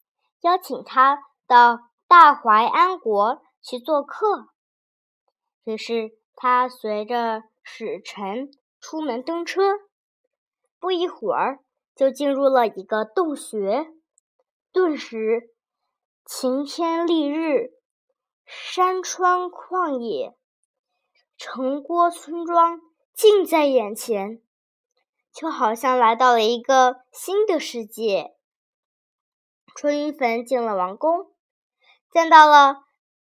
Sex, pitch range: male, 235-355 Hz